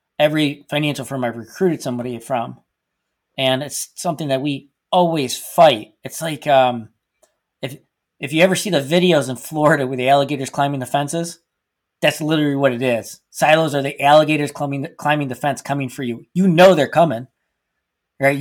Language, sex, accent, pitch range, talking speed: English, male, American, 135-160 Hz, 175 wpm